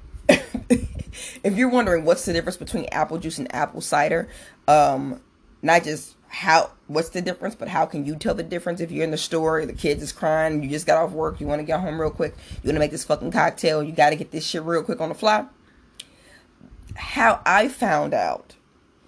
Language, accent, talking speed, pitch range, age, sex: English, American, 215 wpm, 155-195 Hz, 20-39, female